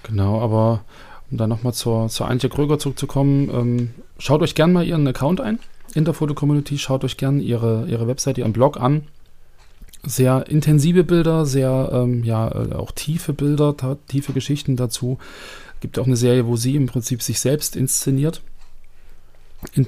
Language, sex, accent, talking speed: German, male, German, 165 wpm